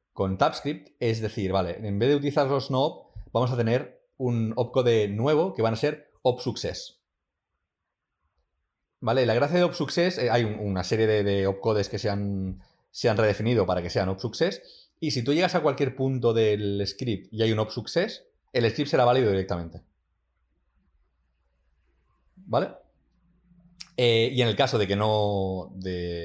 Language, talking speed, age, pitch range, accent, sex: Spanish, 170 wpm, 30-49, 95-125 Hz, Spanish, male